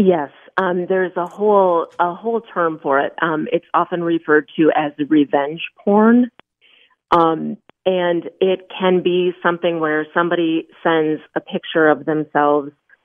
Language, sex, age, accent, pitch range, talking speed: English, female, 30-49, American, 155-175 Hz, 145 wpm